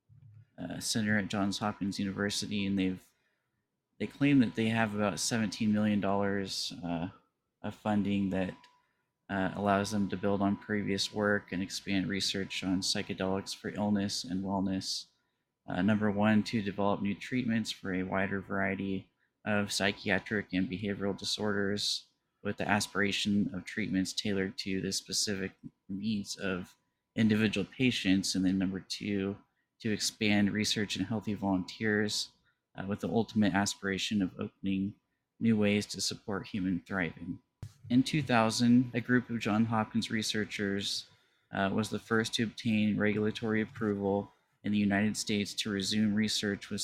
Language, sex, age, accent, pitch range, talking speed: English, male, 20-39, American, 95-110 Hz, 145 wpm